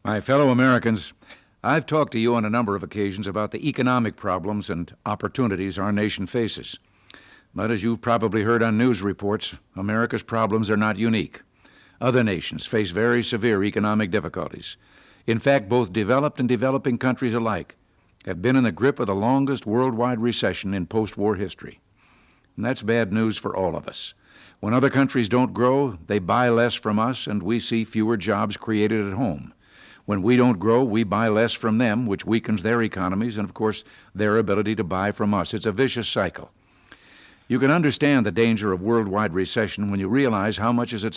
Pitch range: 105-125 Hz